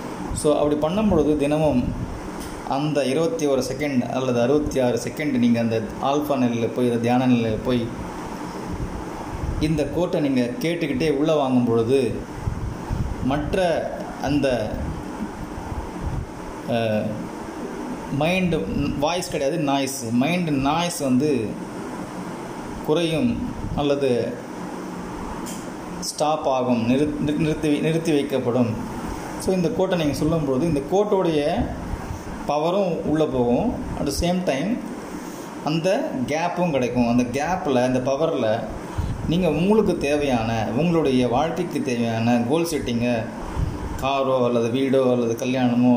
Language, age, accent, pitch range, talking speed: Tamil, 30-49, native, 120-155 Hz, 100 wpm